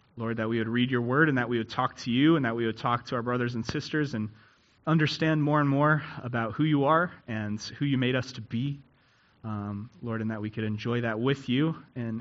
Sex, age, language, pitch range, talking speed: male, 30-49, English, 110-125 Hz, 250 wpm